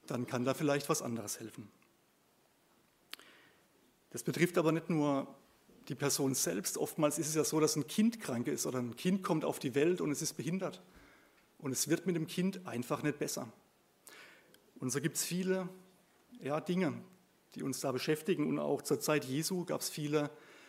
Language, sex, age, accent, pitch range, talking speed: German, male, 30-49, German, 130-170 Hz, 185 wpm